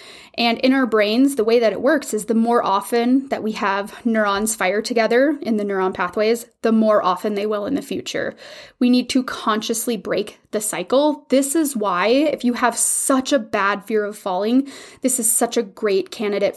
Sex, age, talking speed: female, 20-39, 205 wpm